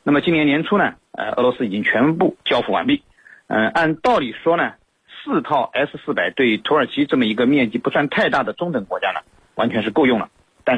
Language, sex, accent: Chinese, male, native